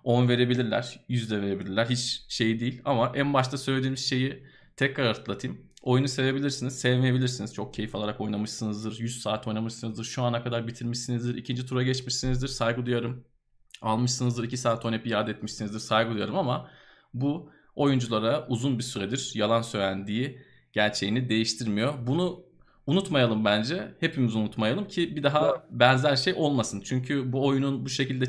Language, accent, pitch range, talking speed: Turkish, native, 110-130 Hz, 140 wpm